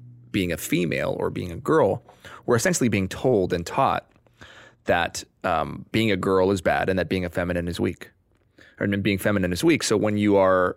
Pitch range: 100-125 Hz